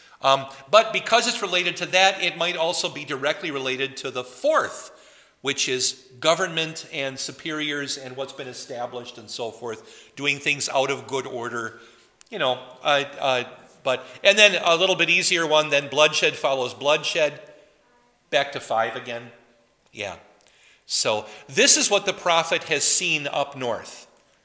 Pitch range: 125-165 Hz